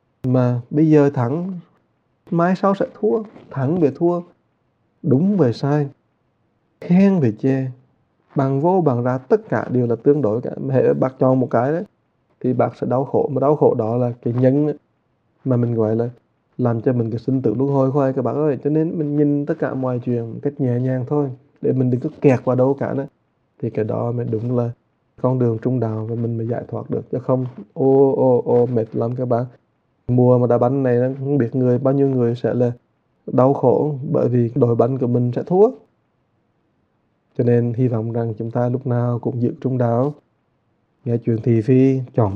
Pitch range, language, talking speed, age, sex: 120-145 Hz, English, 215 wpm, 20-39, male